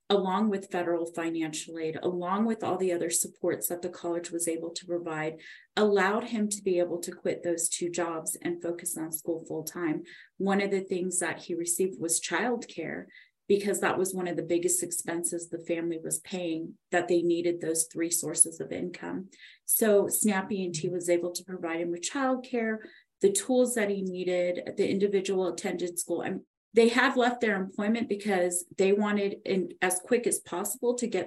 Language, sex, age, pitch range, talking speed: English, female, 30-49, 175-210 Hz, 190 wpm